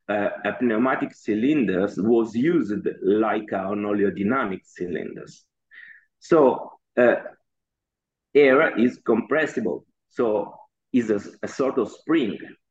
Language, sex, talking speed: English, male, 105 wpm